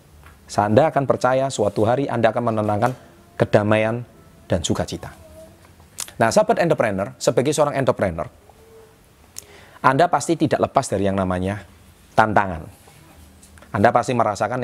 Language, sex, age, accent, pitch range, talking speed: Indonesian, male, 30-49, native, 90-125 Hz, 105 wpm